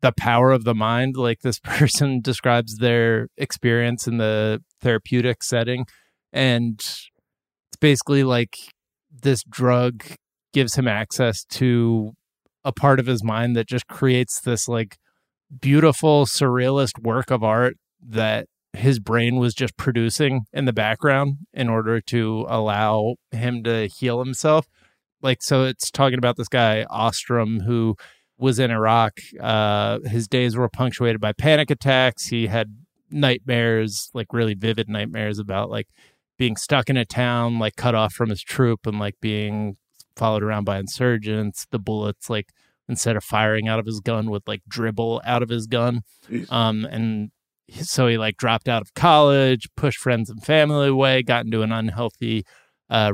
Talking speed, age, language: 160 wpm, 20-39, English